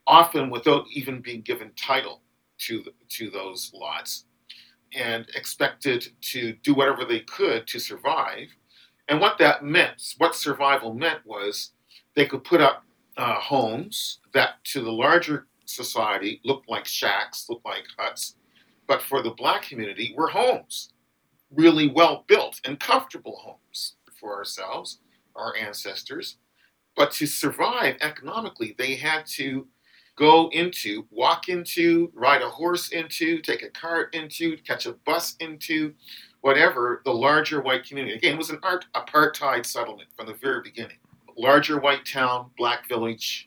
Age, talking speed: 50-69, 145 wpm